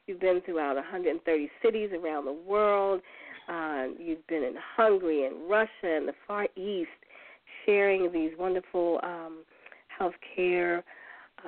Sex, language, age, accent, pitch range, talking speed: female, English, 40-59, American, 170-220 Hz, 130 wpm